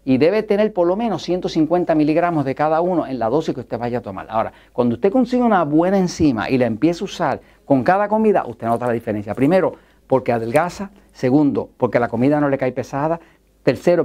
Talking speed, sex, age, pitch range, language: 215 wpm, male, 50-69, 125-170 Hz, Spanish